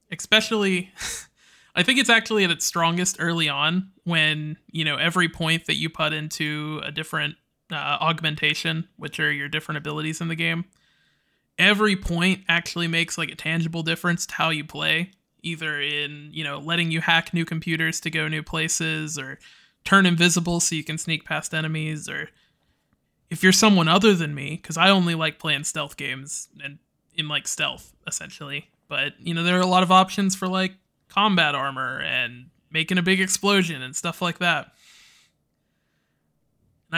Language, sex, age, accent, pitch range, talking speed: English, male, 20-39, American, 155-180 Hz, 175 wpm